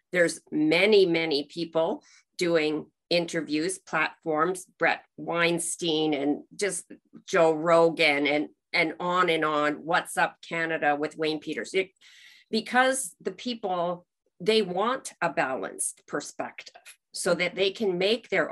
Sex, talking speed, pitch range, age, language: female, 125 wpm, 160-210 Hz, 40-59, English